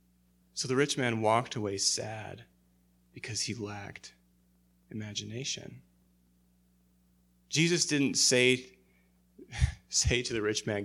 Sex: male